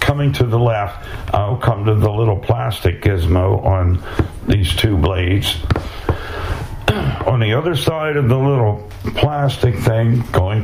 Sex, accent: male, American